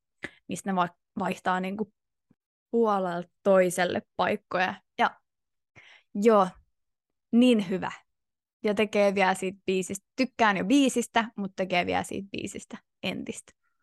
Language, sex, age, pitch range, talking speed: Finnish, female, 20-39, 180-220 Hz, 110 wpm